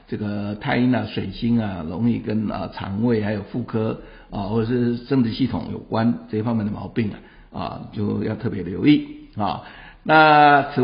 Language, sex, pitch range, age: Chinese, male, 105-125 Hz, 60-79